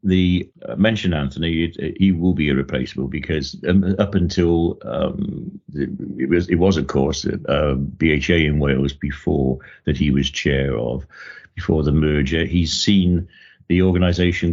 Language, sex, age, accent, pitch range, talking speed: English, male, 60-79, British, 70-85 Hz, 160 wpm